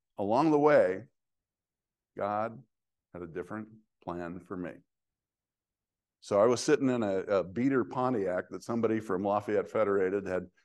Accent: American